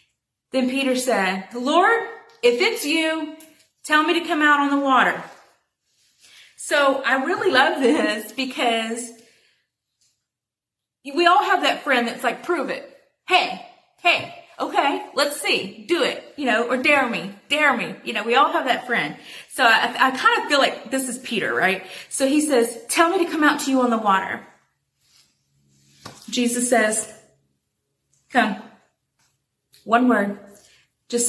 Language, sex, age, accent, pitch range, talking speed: English, female, 30-49, American, 195-285 Hz, 155 wpm